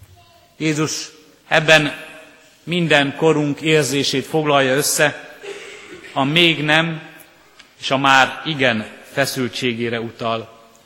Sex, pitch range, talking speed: male, 130-155 Hz, 90 wpm